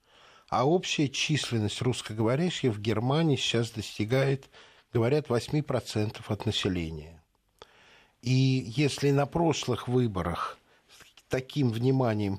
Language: Russian